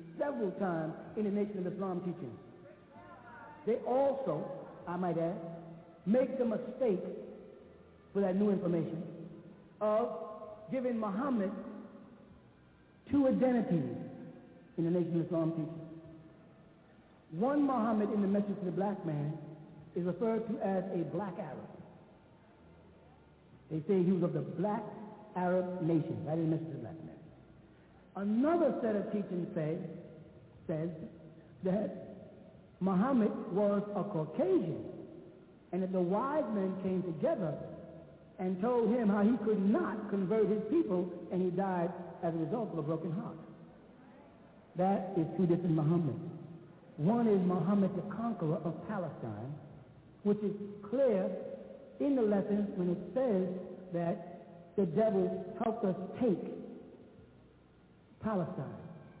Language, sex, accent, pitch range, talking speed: English, male, American, 165-210 Hz, 130 wpm